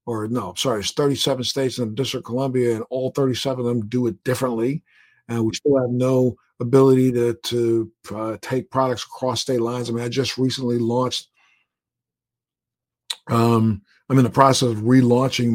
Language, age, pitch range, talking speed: English, 50-69, 115-130 Hz, 180 wpm